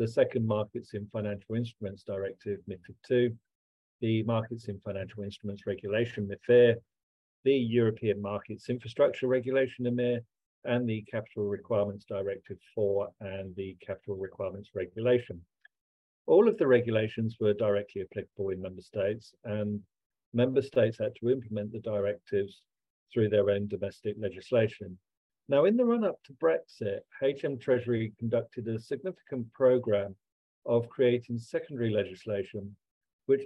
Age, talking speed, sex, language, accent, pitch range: 50-69, 130 wpm, male, English, British, 100-125 Hz